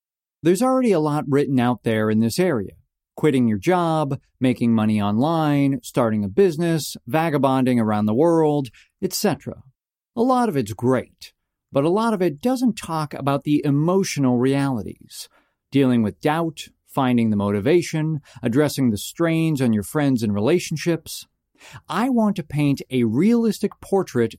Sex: male